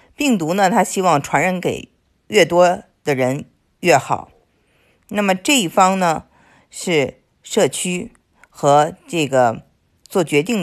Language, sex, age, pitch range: Chinese, female, 50-69, 145-195 Hz